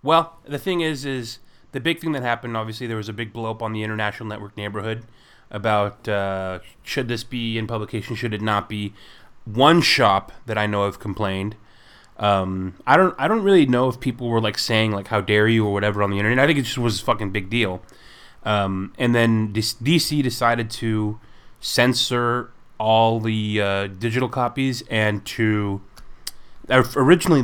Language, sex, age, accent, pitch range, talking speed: English, male, 20-39, American, 105-120 Hz, 185 wpm